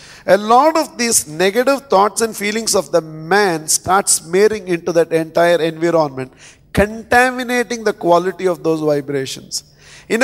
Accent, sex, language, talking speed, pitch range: Indian, male, English, 140 wpm, 160-215 Hz